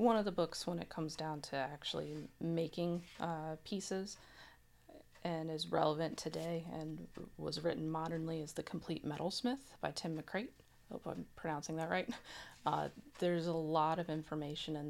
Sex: female